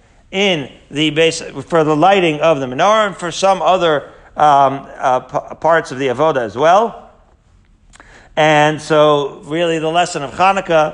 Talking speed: 160 wpm